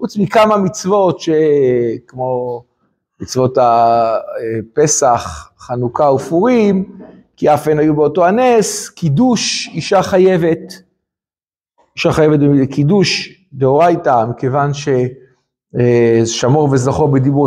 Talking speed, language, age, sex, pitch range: 85 wpm, Hebrew, 50-69, male, 145-195 Hz